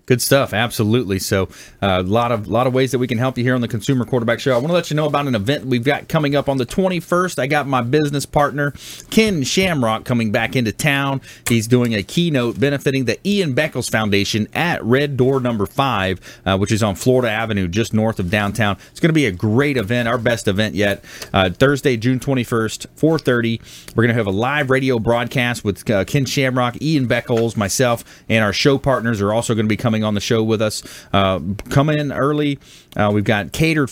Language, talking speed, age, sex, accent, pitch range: English, 230 wpm, 30-49, male, American, 110-135 Hz